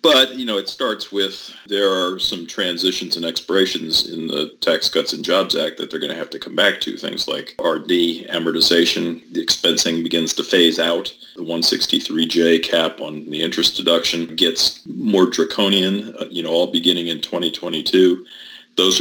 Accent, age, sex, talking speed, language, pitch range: American, 40-59, male, 175 wpm, English, 85-95 Hz